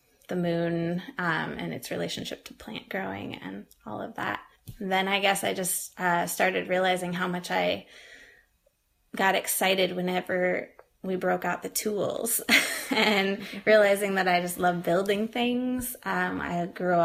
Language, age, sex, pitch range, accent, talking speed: English, 20-39, female, 175-190 Hz, American, 150 wpm